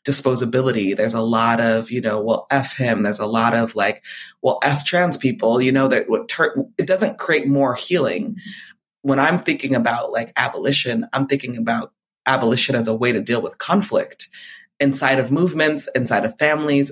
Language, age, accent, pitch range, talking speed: English, 30-49, American, 115-140 Hz, 175 wpm